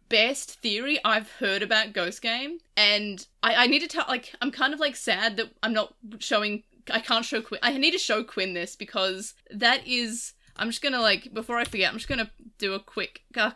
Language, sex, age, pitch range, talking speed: English, female, 20-39, 190-245 Hz, 220 wpm